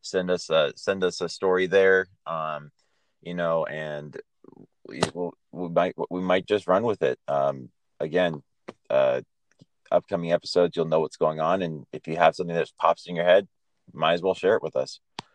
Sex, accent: male, American